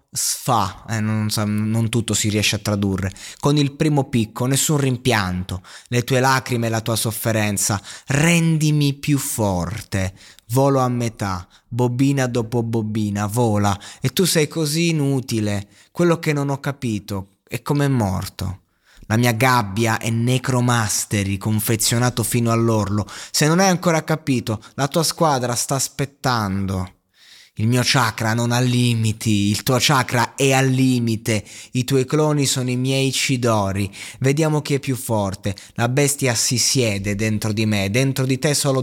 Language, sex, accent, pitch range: Italian, male, native, 105-140 Hz